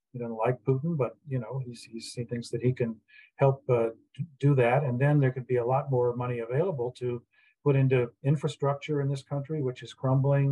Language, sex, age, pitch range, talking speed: English, male, 50-69, 120-145 Hz, 215 wpm